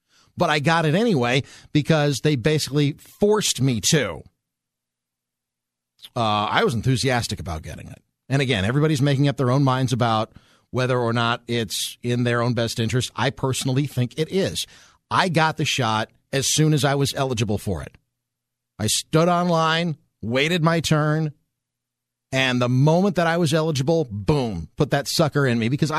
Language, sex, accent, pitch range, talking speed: English, male, American, 115-165 Hz, 170 wpm